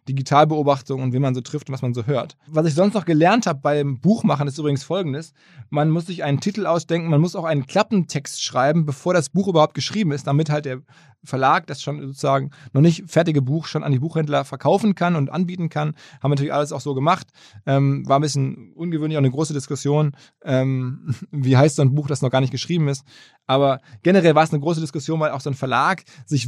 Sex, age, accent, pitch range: male, 20-39, German, 140-165 Hz